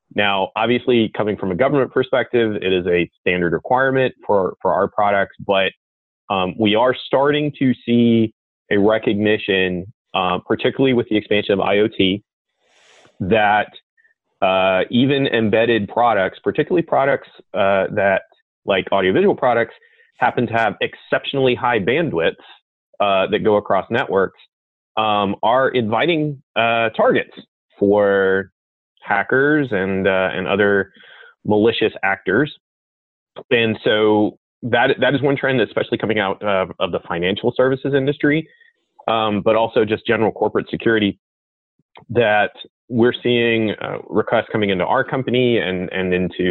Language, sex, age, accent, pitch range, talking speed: English, male, 30-49, American, 95-125 Hz, 135 wpm